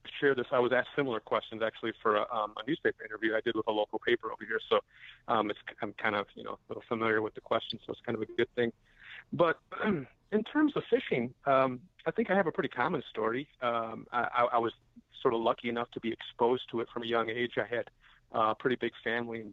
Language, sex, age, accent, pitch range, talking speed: English, male, 30-49, American, 110-120 Hz, 250 wpm